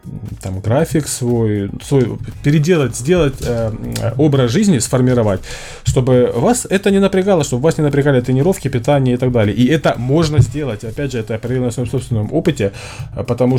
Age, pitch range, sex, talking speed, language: 20-39, 110-135 Hz, male, 160 wpm, Russian